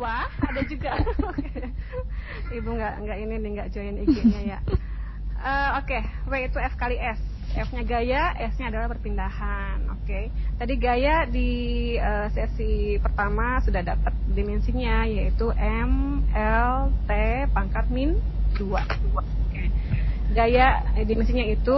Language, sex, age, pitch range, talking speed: Indonesian, female, 20-39, 200-255 Hz, 130 wpm